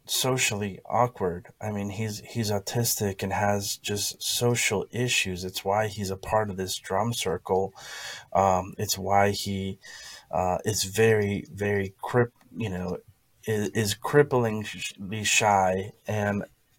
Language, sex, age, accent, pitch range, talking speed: English, male, 30-49, American, 100-125 Hz, 130 wpm